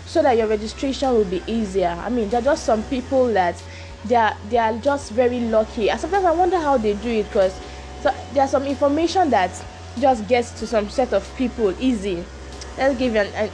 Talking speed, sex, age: 215 wpm, female, 20-39